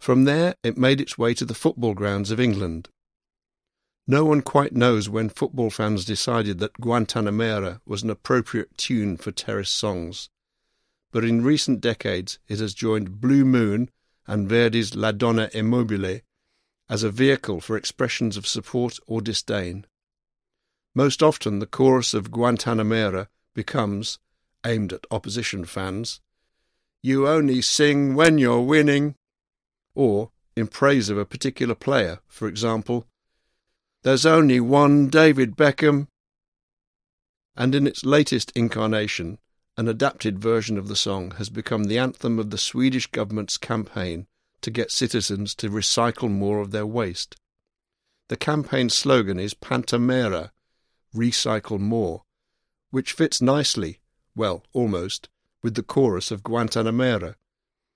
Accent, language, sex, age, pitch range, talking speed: British, English, male, 60-79, 105-130 Hz, 135 wpm